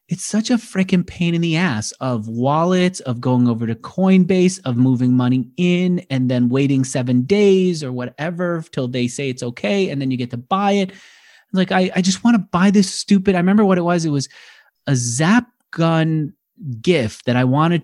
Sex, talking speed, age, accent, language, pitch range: male, 205 wpm, 30-49, American, English, 125-180 Hz